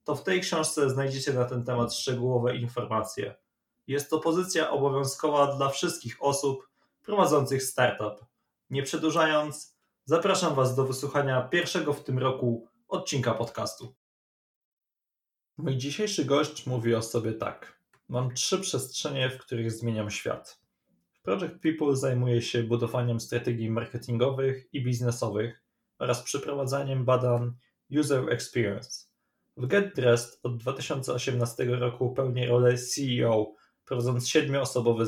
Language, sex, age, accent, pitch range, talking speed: Polish, male, 20-39, native, 120-140 Hz, 120 wpm